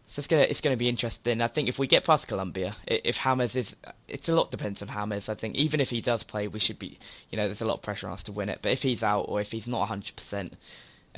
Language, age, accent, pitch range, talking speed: English, 10-29, British, 105-120 Hz, 290 wpm